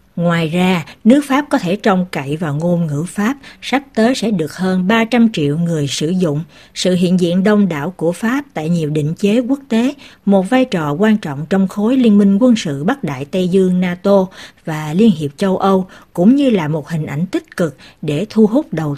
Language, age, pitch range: Vietnamese, 60-79, 170-225 Hz